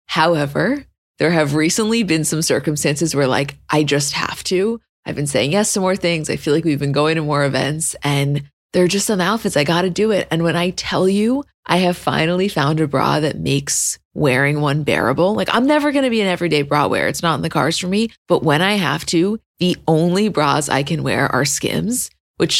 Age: 20-39